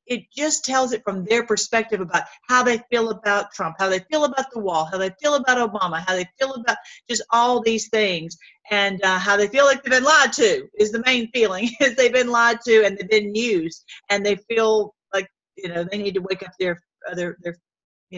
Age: 40-59